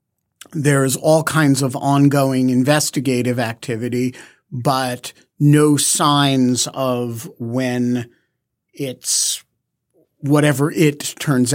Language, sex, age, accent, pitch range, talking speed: English, male, 50-69, American, 125-160 Hz, 90 wpm